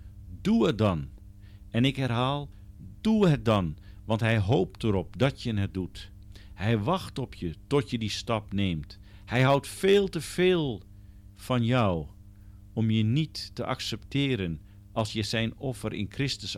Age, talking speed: 50-69, 160 wpm